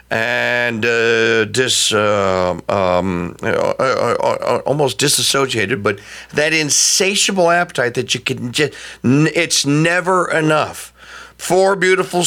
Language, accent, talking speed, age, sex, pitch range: English, American, 110 wpm, 50-69, male, 130-195 Hz